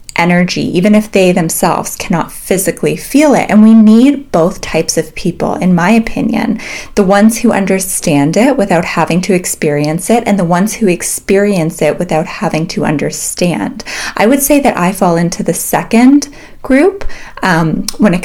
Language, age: English, 20-39